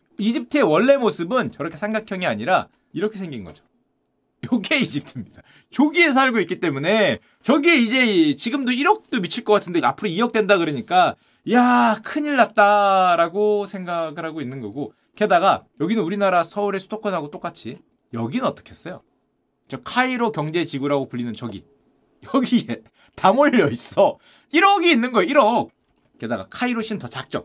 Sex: male